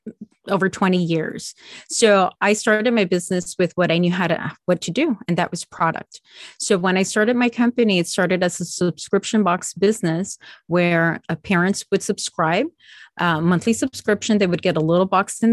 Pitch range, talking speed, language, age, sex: 175-210 Hz, 185 wpm, English, 30-49, female